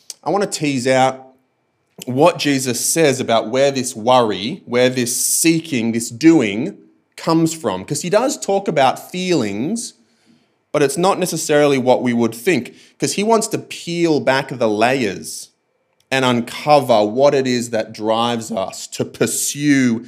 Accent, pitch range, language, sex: Australian, 110-150 Hz, English, male